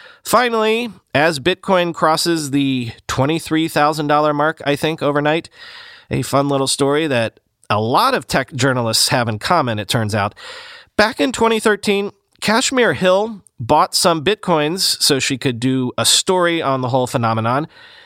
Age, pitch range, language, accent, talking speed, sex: 30-49, 130-195 Hz, English, American, 145 wpm, male